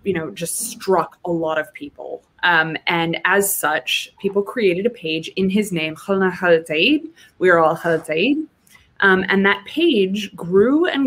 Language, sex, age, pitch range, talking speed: English, female, 20-39, 170-235 Hz, 165 wpm